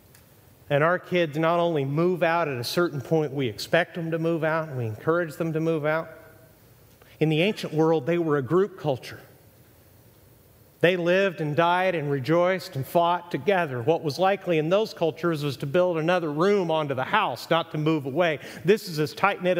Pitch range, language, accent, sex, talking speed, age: 135-195 Hz, English, American, male, 195 wpm, 40-59